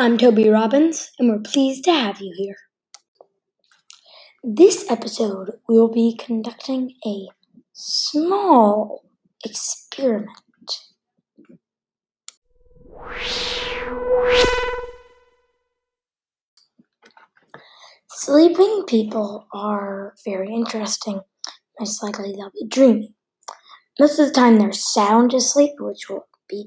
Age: 20-39